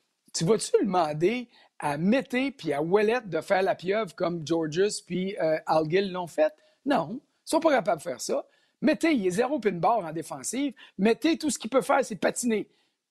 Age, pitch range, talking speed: 50-69, 185-270 Hz, 200 wpm